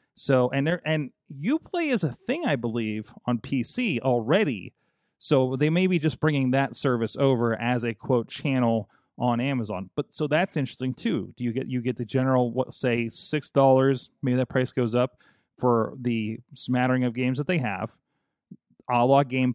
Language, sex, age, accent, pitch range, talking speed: English, male, 30-49, American, 120-145 Hz, 185 wpm